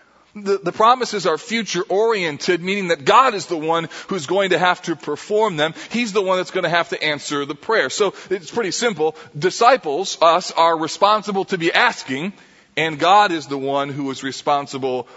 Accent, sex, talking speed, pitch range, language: American, male, 190 wpm, 155-210 Hz, English